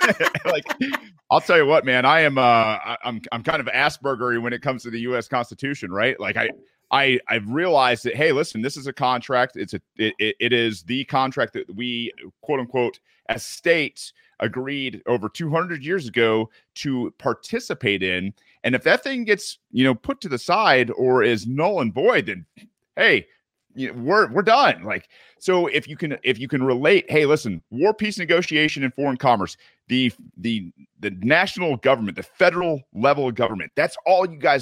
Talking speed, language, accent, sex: 190 wpm, English, American, male